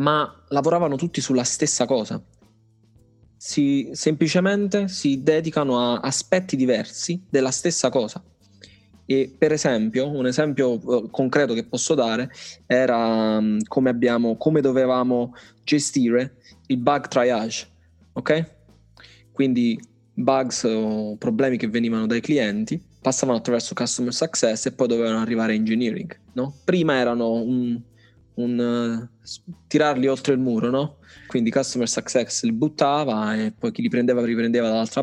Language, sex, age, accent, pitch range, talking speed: Italian, male, 20-39, native, 115-140 Hz, 130 wpm